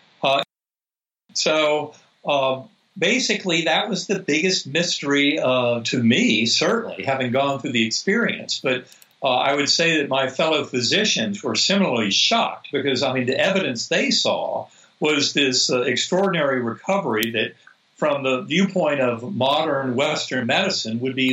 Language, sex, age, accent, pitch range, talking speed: English, male, 60-79, American, 125-170 Hz, 145 wpm